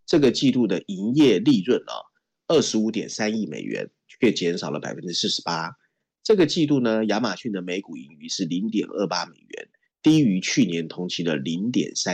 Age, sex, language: 30-49, male, Chinese